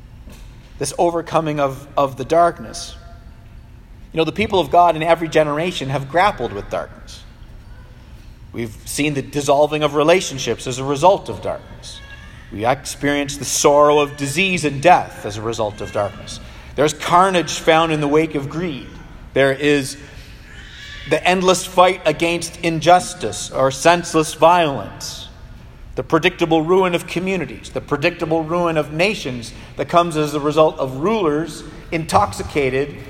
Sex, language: male, English